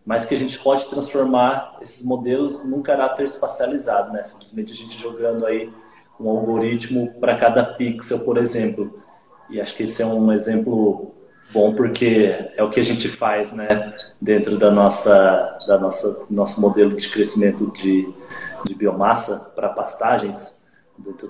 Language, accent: Portuguese, Brazilian